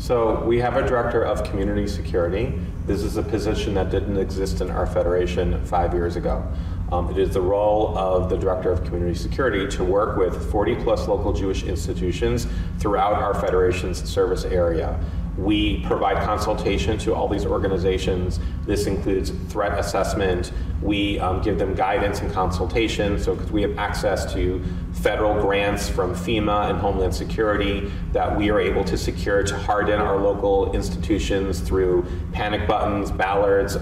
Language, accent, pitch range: English, American, 90-100 Hz